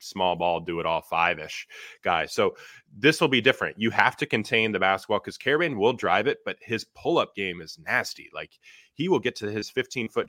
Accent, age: American, 20-39